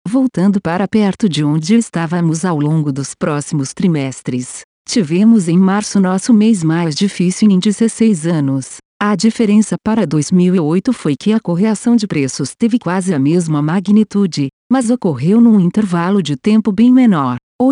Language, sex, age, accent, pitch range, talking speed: Portuguese, female, 50-69, Brazilian, 160-220 Hz, 150 wpm